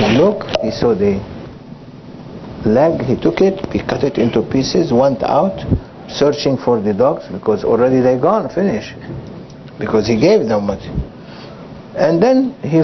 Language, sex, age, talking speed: English, male, 60-79, 150 wpm